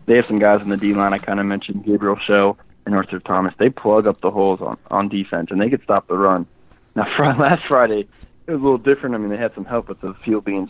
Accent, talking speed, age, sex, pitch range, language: American, 275 wpm, 20-39, male, 95-115 Hz, English